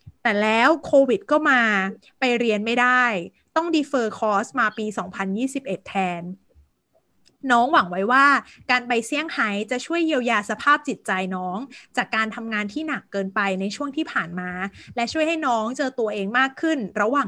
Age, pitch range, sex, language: 20-39, 210-275 Hz, female, Thai